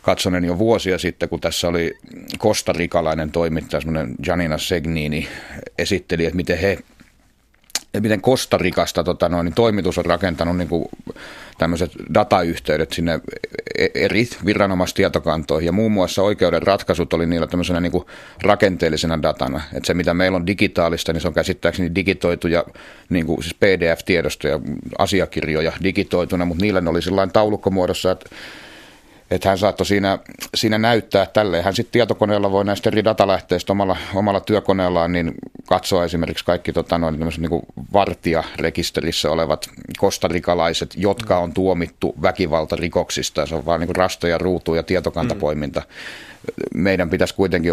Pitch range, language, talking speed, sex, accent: 85-95 Hz, Finnish, 130 wpm, male, native